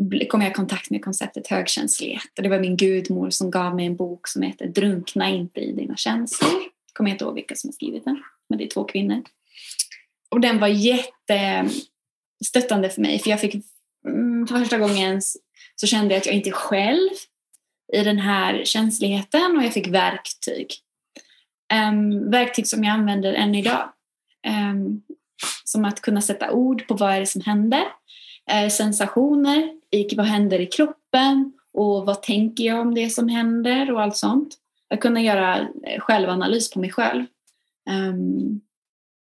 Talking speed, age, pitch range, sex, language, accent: 165 wpm, 20-39, 200-260 Hz, female, Swedish, native